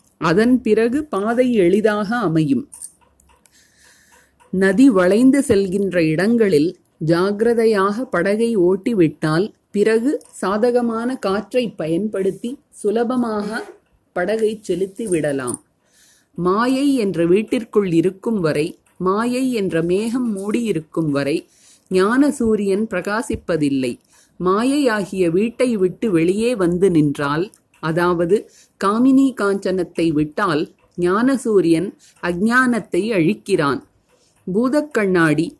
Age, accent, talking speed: 30-49, native, 80 wpm